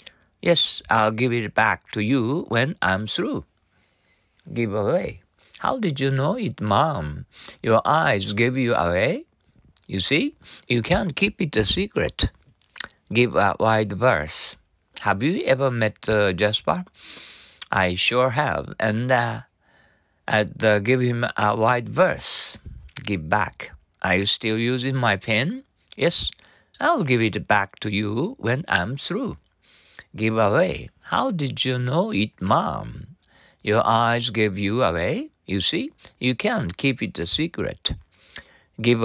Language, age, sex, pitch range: Japanese, 50-69, male, 100-130 Hz